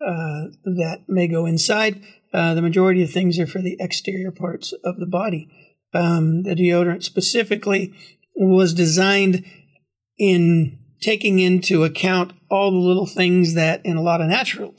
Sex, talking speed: male, 155 wpm